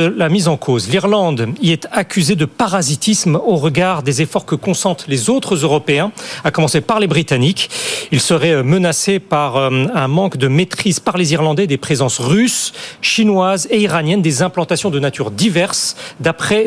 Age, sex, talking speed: 40-59, male, 170 wpm